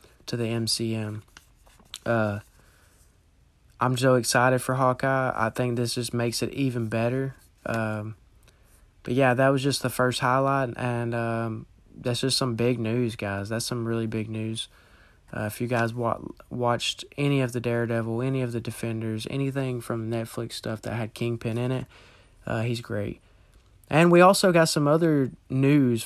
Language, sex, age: English, male, 20-39